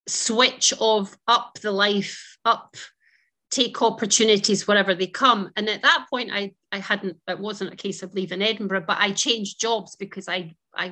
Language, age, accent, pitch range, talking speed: English, 30-49, British, 185-220 Hz, 175 wpm